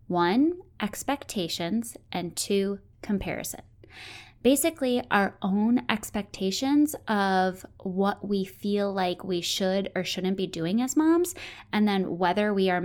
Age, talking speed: 20-39, 125 wpm